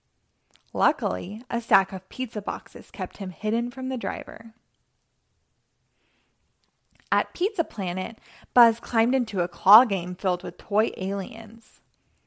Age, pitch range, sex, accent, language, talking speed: 20-39, 195-250 Hz, female, American, English, 120 wpm